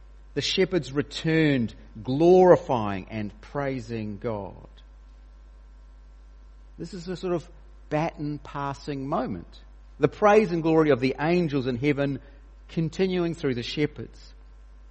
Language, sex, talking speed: English, male, 115 wpm